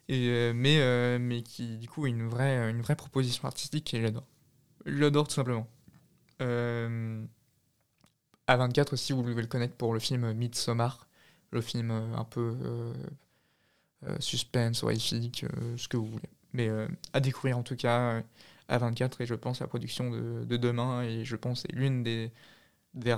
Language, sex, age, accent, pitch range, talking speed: French, male, 20-39, French, 115-135 Hz, 175 wpm